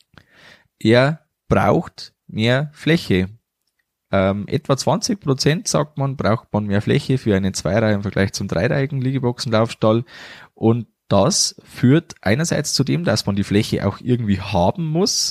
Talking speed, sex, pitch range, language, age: 135 wpm, male, 100-140 Hz, German, 20-39